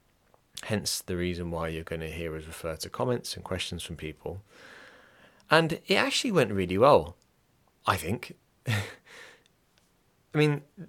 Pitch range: 90-120 Hz